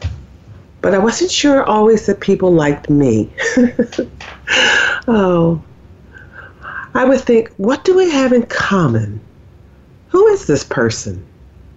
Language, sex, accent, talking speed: English, female, American, 115 wpm